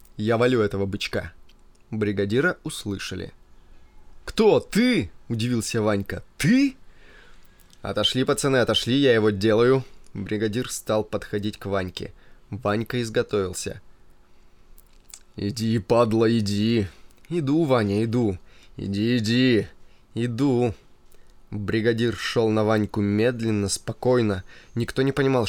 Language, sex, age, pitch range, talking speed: Russian, male, 20-39, 100-130 Hz, 100 wpm